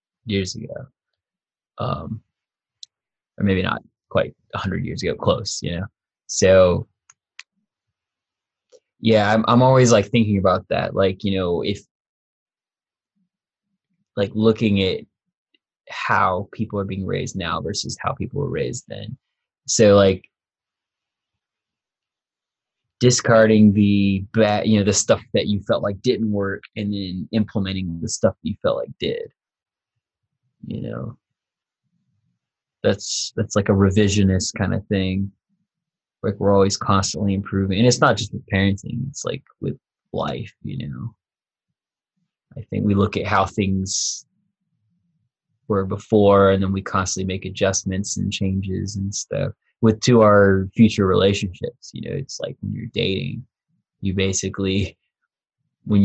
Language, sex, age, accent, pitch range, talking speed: English, male, 20-39, American, 95-115 Hz, 135 wpm